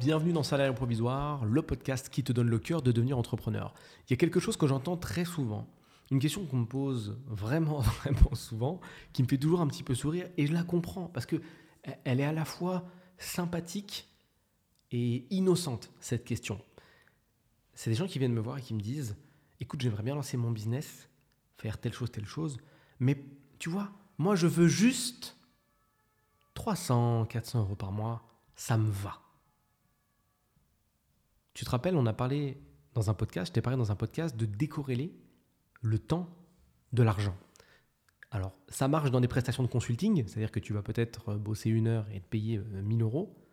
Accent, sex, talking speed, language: French, male, 185 wpm, French